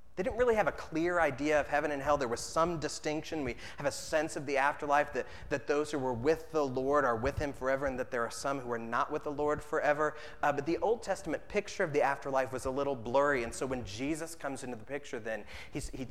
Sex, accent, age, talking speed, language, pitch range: male, American, 30-49, 255 wpm, English, 110-135 Hz